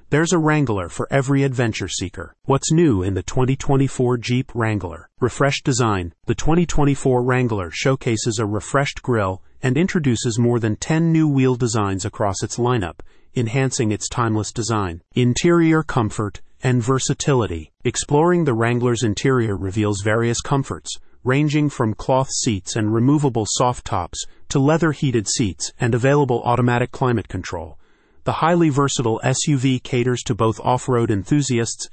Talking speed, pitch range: 140 wpm, 110-135 Hz